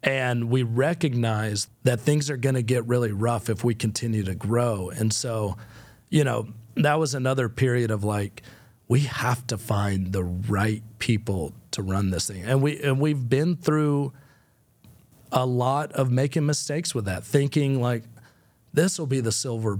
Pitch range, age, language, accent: 110-135 Hz, 40-59, English, American